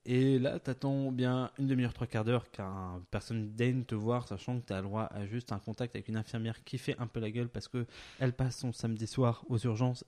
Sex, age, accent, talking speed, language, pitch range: male, 20-39, French, 250 wpm, French, 110-140 Hz